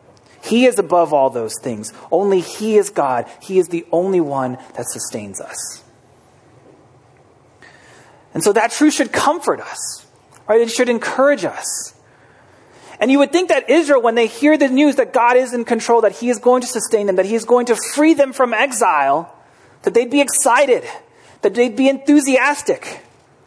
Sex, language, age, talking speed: male, English, 30-49, 175 wpm